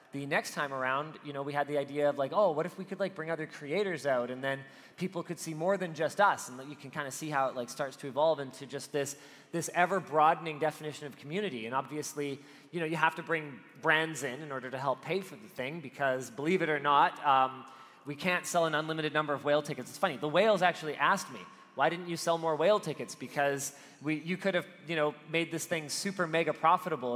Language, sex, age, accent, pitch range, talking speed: English, male, 30-49, American, 140-170 Hz, 245 wpm